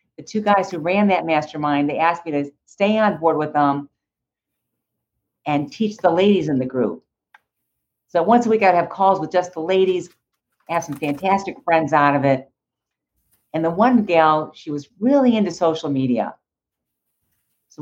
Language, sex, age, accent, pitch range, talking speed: English, female, 50-69, American, 150-200 Hz, 180 wpm